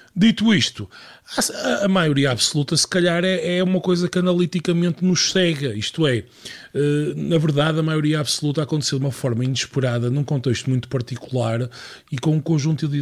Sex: male